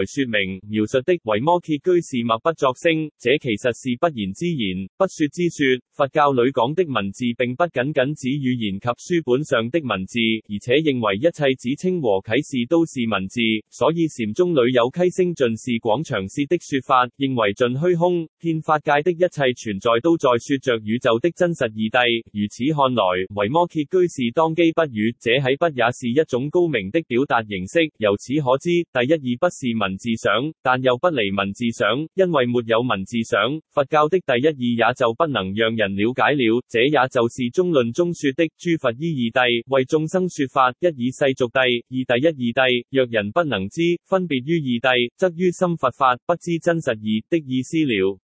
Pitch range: 115-165 Hz